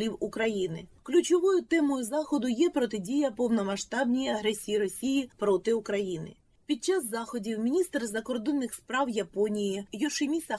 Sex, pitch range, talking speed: female, 210-285 Hz, 110 wpm